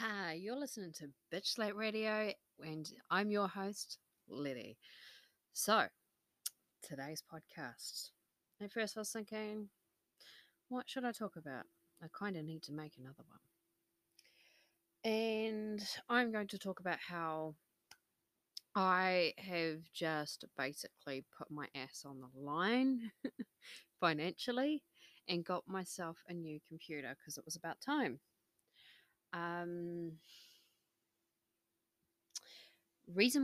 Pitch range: 155-205 Hz